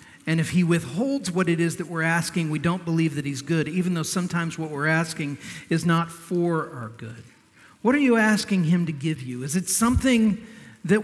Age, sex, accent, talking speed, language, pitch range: 50-69, male, American, 210 wpm, English, 145-185 Hz